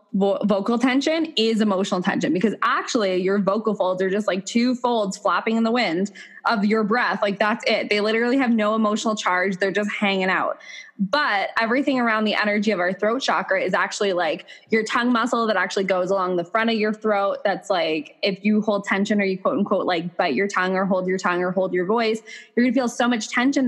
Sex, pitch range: female, 190-225 Hz